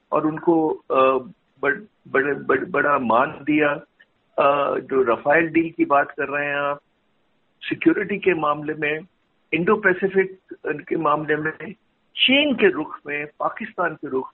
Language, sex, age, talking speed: Hindi, male, 50-69, 140 wpm